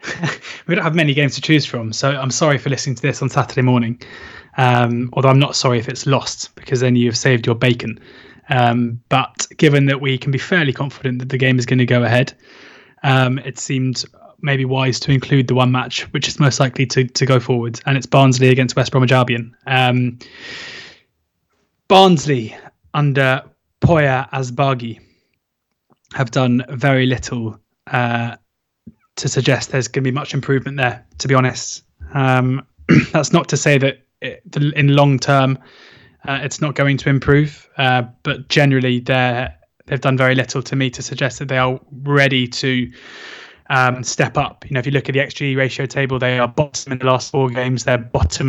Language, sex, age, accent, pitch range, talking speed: English, male, 20-39, British, 125-140 Hz, 185 wpm